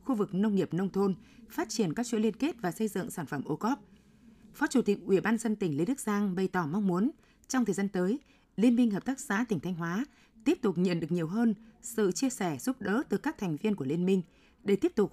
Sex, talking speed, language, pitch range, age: female, 260 wpm, Vietnamese, 180-235 Hz, 20-39